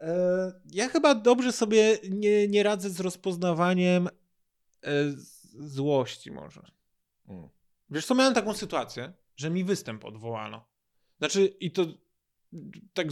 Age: 20-39